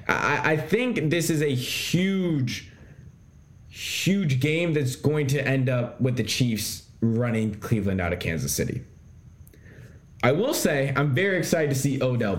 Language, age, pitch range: English, 20-39, 120-165 Hz